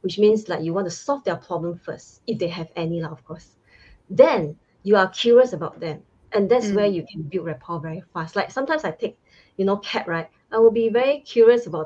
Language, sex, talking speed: English, female, 230 wpm